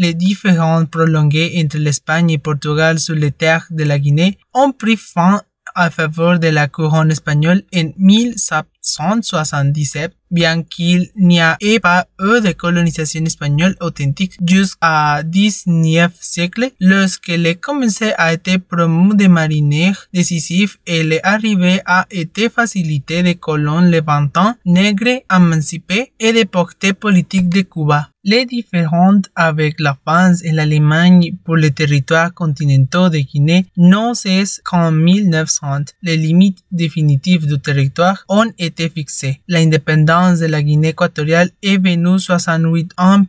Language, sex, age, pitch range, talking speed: French, male, 20-39, 160-190 Hz, 135 wpm